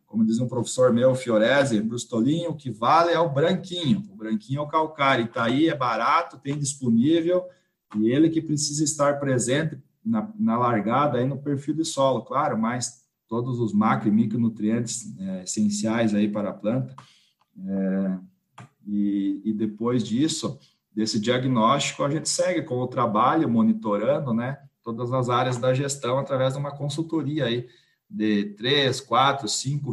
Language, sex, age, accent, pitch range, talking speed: Portuguese, male, 40-59, Brazilian, 115-145 Hz, 160 wpm